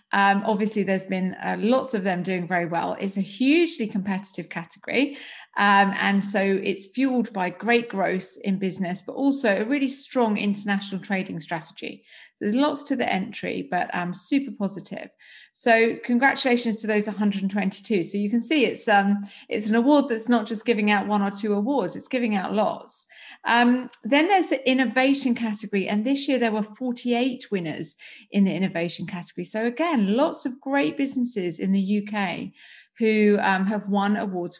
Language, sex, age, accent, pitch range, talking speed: English, female, 30-49, British, 190-245 Hz, 175 wpm